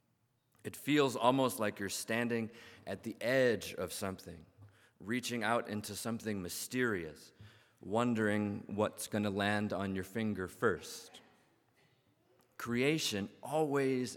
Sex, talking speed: male, 110 wpm